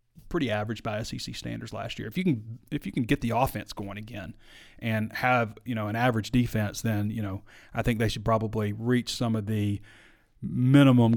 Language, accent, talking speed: English, American, 205 wpm